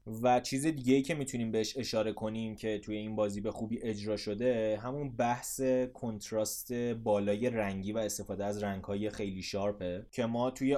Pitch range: 105-125 Hz